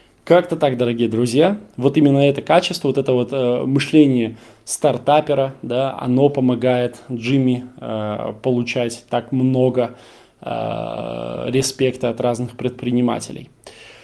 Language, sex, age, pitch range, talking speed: Russian, male, 20-39, 120-140 Hz, 110 wpm